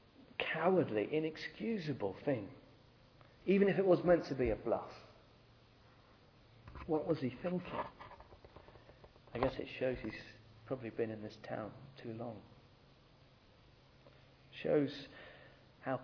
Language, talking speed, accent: English, 110 wpm, British